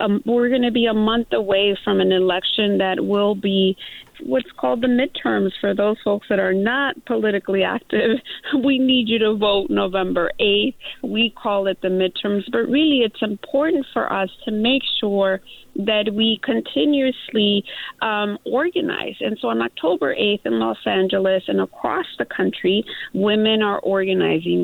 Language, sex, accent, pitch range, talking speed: English, female, American, 190-245 Hz, 165 wpm